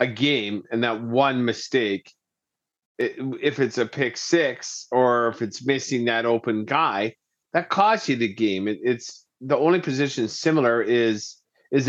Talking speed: 150 wpm